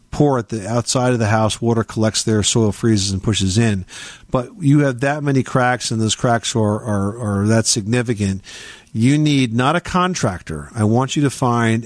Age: 50-69